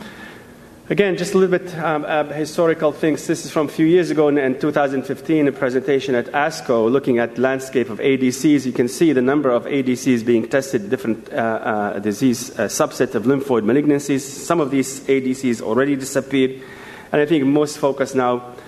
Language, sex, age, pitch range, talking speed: English, male, 40-59, 120-150 Hz, 190 wpm